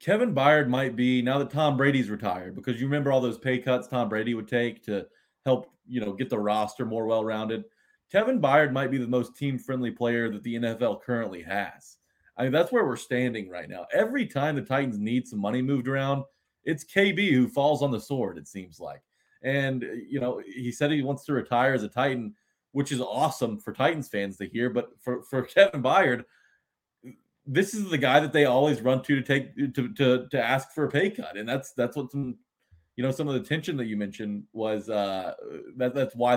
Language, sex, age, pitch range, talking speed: English, male, 30-49, 110-140 Hz, 220 wpm